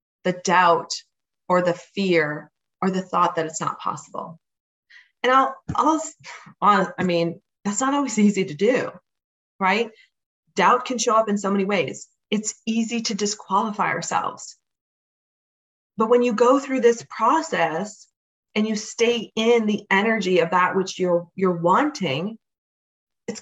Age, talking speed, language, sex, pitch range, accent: 30-49, 145 wpm, English, female, 190-270 Hz, American